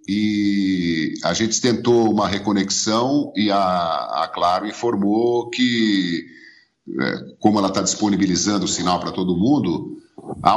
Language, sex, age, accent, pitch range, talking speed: Portuguese, male, 50-69, Brazilian, 105-165 Hz, 125 wpm